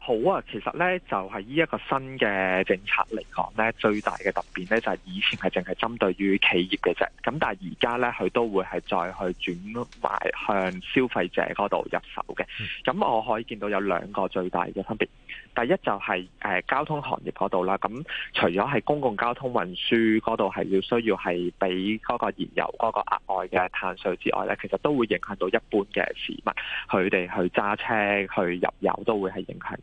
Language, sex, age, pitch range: Chinese, male, 20-39, 95-115 Hz